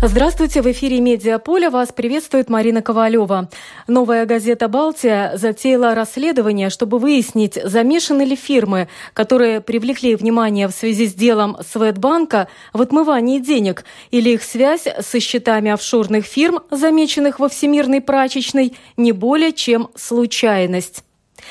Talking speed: 125 wpm